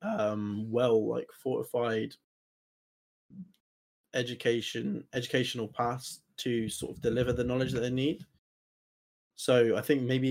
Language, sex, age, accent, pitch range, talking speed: English, male, 20-39, British, 105-125 Hz, 115 wpm